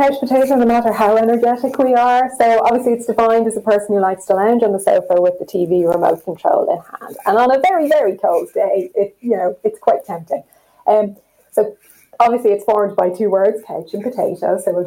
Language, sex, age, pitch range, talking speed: English, female, 30-49, 185-230 Hz, 225 wpm